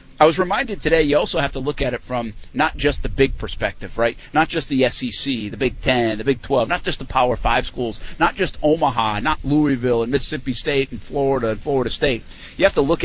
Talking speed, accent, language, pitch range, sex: 235 wpm, American, English, 110-140 Hz, male